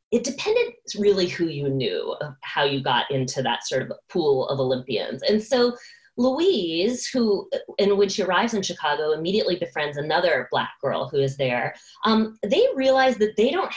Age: 20-39